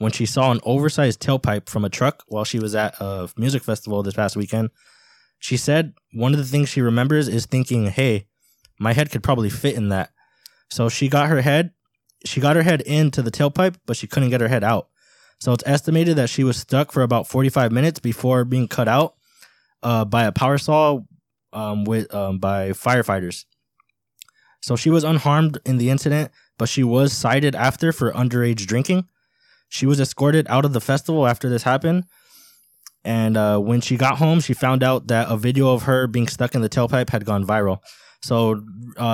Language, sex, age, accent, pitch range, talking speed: English, male, 20-39, American, 110-135 Hz, 200 wpm